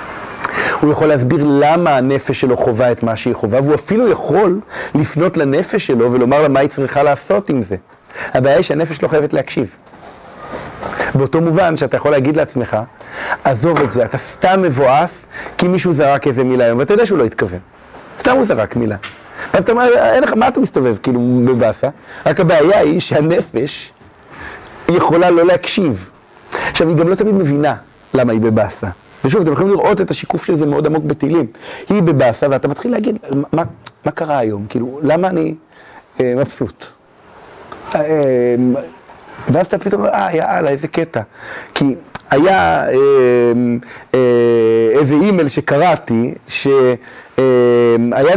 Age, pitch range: 40-59, 120-165 Hz